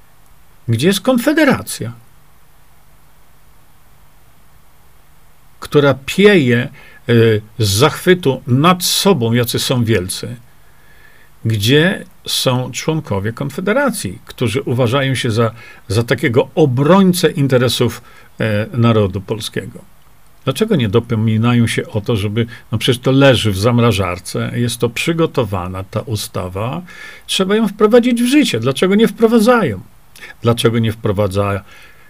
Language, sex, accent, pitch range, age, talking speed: Polish, male, native, 115-165 Hz, 50-69, 105 wpm